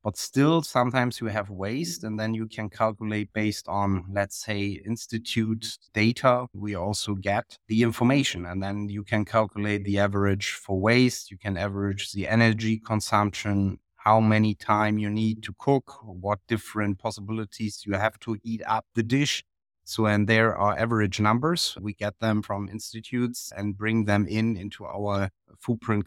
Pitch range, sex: 100-115 Hz, male